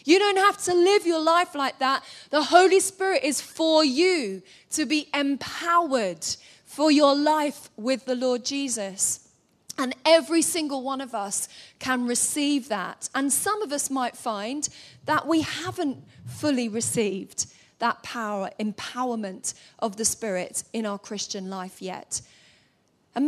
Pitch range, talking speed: 220-305 Hz, 145 wpm